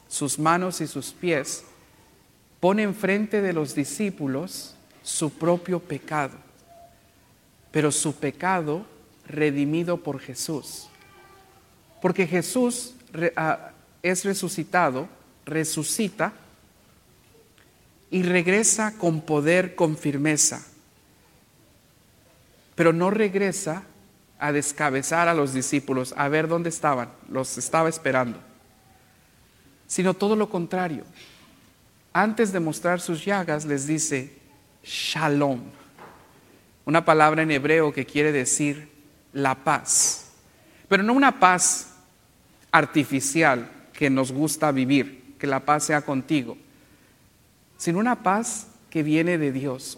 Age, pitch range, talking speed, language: 50-69, 140-180 Hz, 105 wpm, English